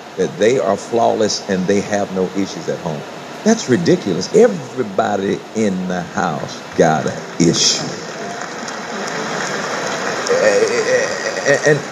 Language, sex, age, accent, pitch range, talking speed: English, male, 50-69, American, 95-115 Hz, 110 wpm